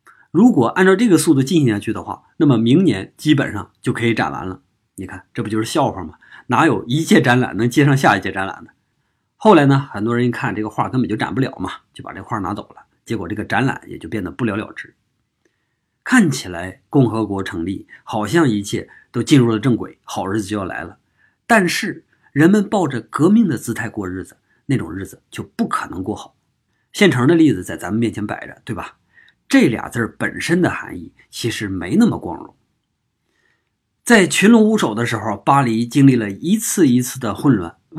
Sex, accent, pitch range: male, native, 105-145 Hz